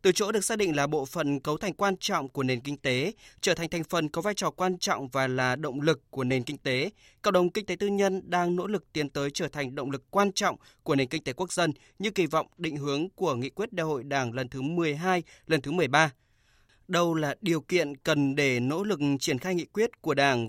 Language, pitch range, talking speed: Vietnamese, 135-180 Hz, 255 wpm